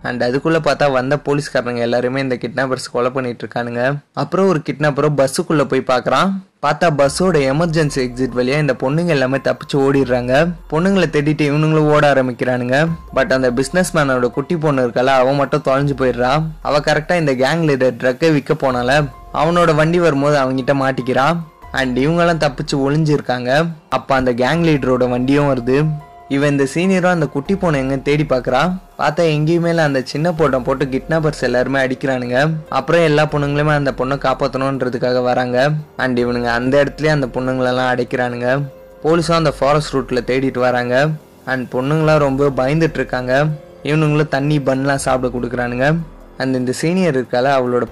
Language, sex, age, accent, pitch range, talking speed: Tamil, male, 20-39, native, 125-155 Hz, 115 wpm